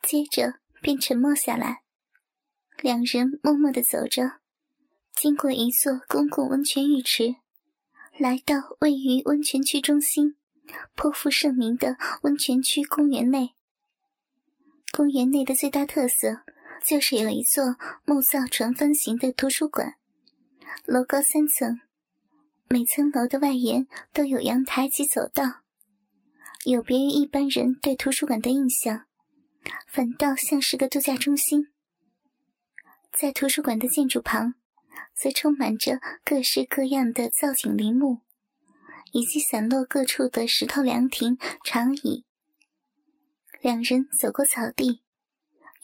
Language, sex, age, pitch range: Chinese, male, 10-29, 255-295 Hz